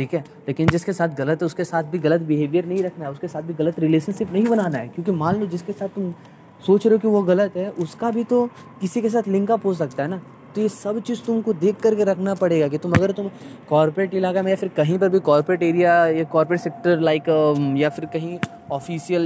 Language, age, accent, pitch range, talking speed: Hindi, 20-39, native, 155-200 Hz, 135 wpm